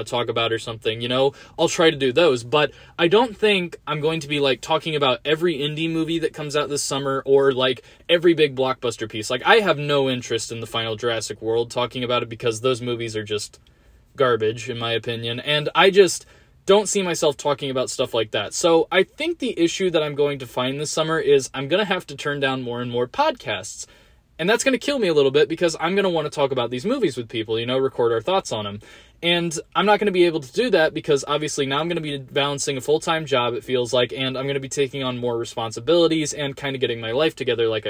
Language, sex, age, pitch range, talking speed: English, male, 20-39, 125-170 Hz, 260 wpm